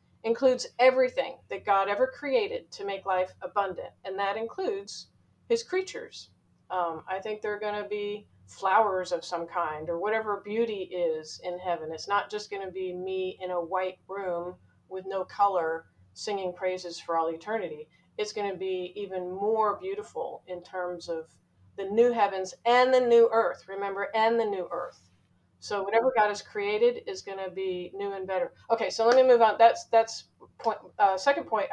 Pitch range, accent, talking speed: 185-230 Hz, American, 180 wpm